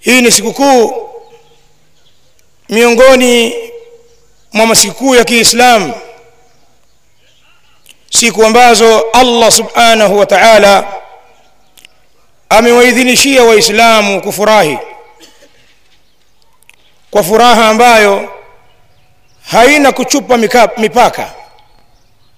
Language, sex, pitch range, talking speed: Swahili, male, 205-255 Hz, 70 wpm